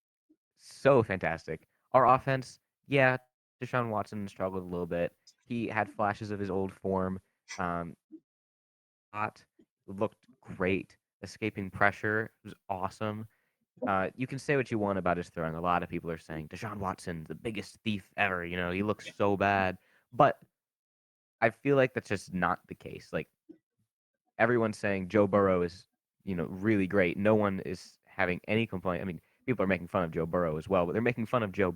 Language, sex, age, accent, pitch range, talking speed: English, male, 20-39, American, 85-105 Hz, 180 wpm